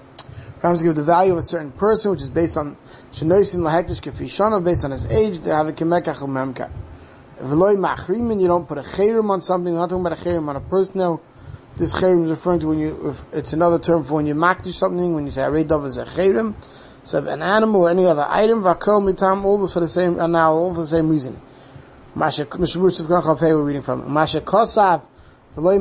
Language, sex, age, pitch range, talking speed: English, male, 30-49, 155-190 Hz, 230 wpm